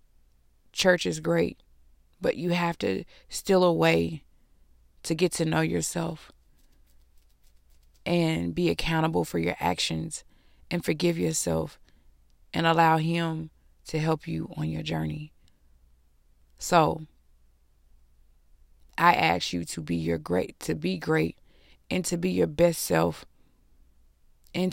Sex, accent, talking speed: female, American, 125 wpm